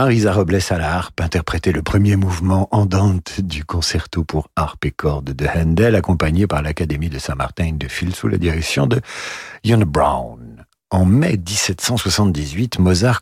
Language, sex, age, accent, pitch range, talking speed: French, male, 50-69, French, 75-100 Hz, 165 wpm